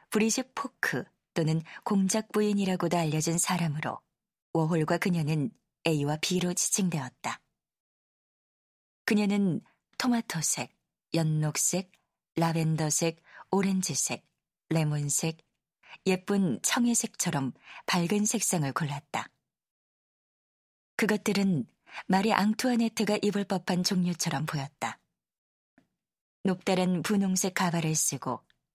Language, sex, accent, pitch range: Korean, female, native, 155-205 Hz